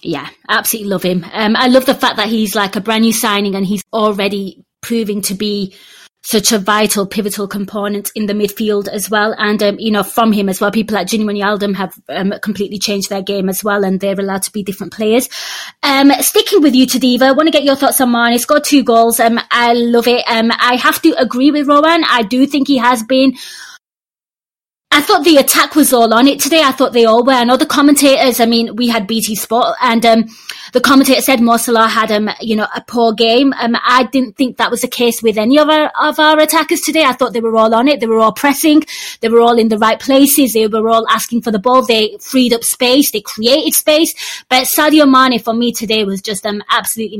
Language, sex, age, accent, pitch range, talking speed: English, female, 20-39, British, 215-265 Hz, 240 wpm